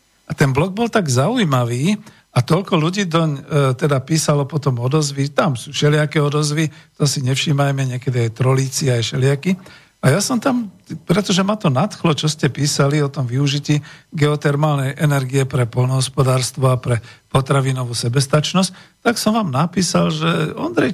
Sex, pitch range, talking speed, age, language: male, 130-165 Hz, 160 wpm, 50-69, Slovak